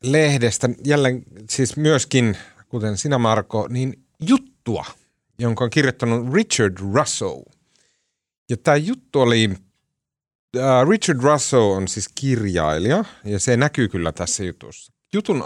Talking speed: 120 wpm